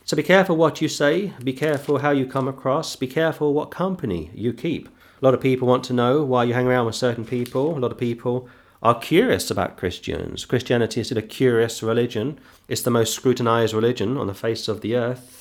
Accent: British